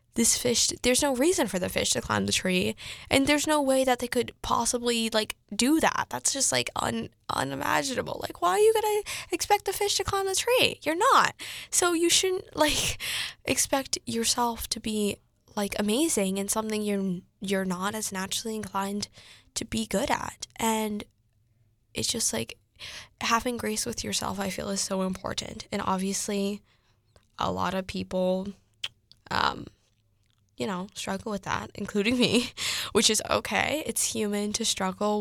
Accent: American